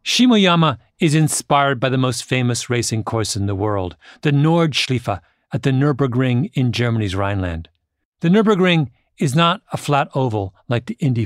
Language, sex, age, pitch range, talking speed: English, male, 40-59, 110-150 Hz, 160 wpm